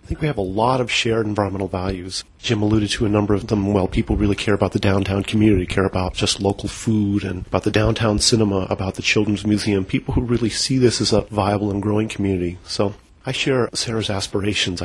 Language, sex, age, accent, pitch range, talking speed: English, male, 40-59, American, 100-115 Hz, 220 wpm